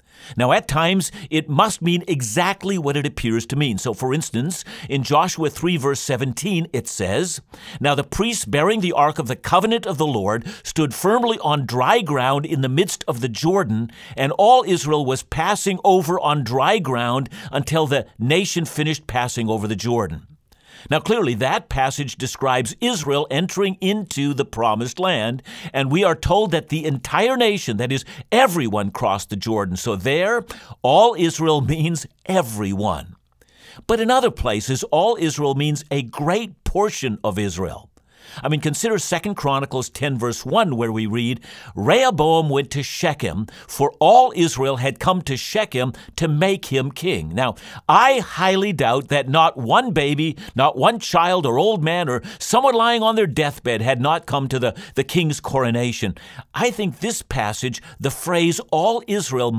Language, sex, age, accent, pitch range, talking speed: English, male, 50-69, American, 130-180 Hz, 170 wpm